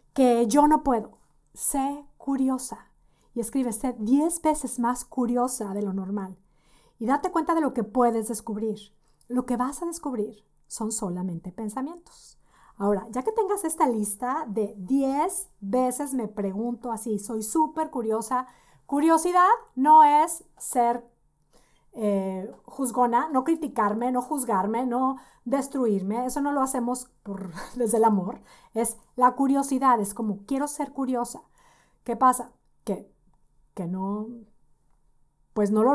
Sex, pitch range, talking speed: female, 215-275 Hz, 140 wpm